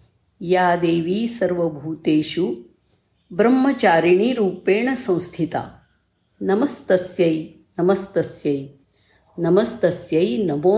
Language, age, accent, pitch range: Marathi, 50-69, native, 170-205 Hz